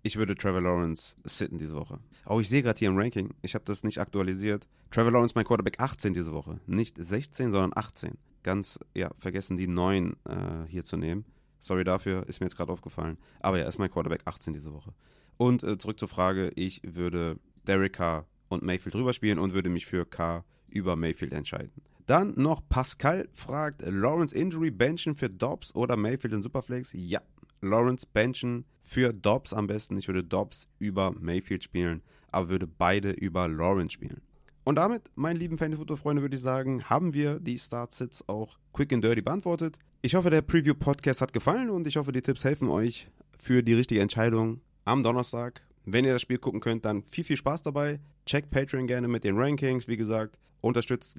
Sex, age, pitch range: male, 30-49, 95-130 Hz